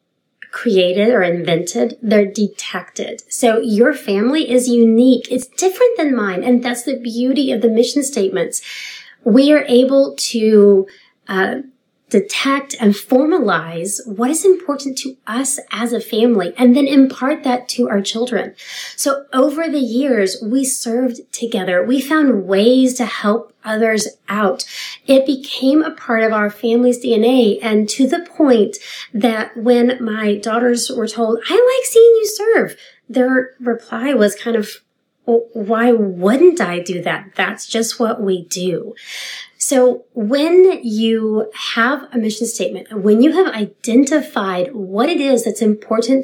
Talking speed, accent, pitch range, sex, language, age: 145 wpm, American, 215-265 Hz, female, English, 30-49